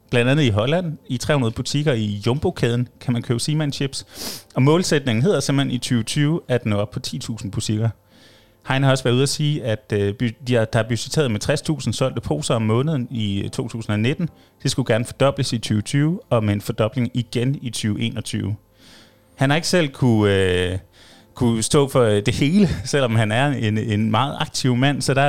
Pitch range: 110-145 Hz